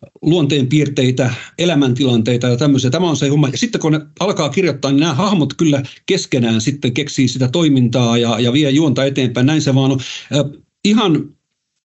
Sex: male